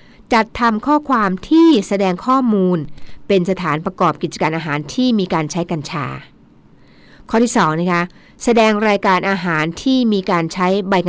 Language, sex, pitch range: Thai, female, 160-215 Hz